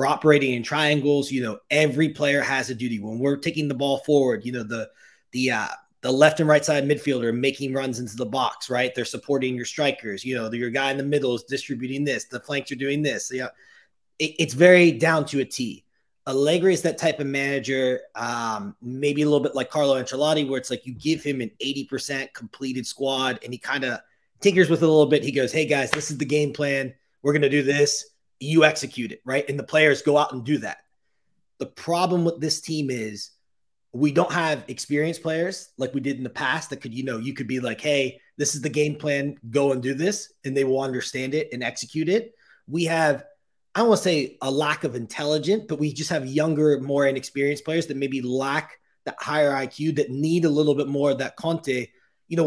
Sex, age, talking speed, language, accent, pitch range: male, 30-49, 230 wpm, English, American, 130-155 Hz